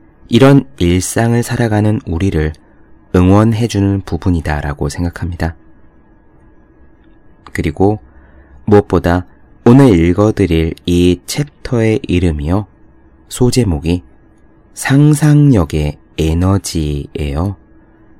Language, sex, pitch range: Korean, male, 80-105 Hz